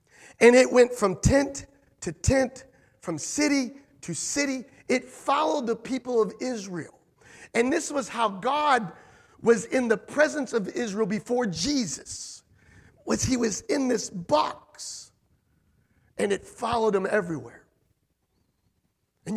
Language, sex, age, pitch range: English, male, 50-69, 160-245 Hz